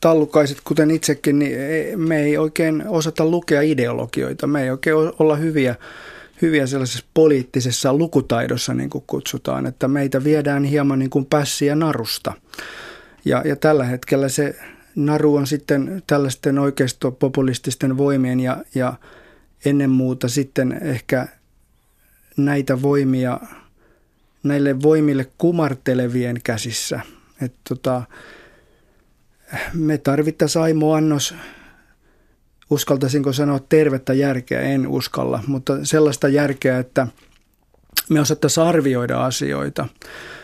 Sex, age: male, 30-49